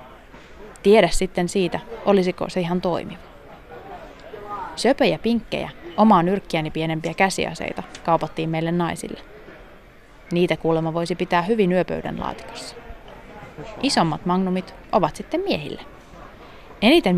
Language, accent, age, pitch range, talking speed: Finnish, native, 20-39, 165-210 Hz, 100 wpm